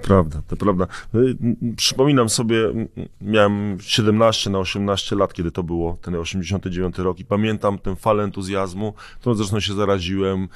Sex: male